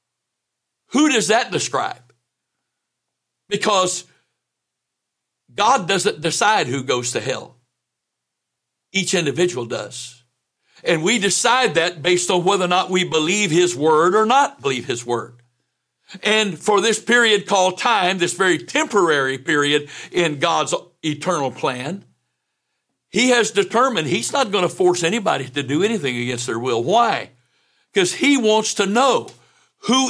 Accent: American